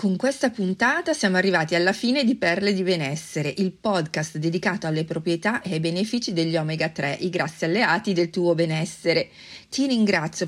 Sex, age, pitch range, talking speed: female, 40-59, 165-210 Hz, 170 wpm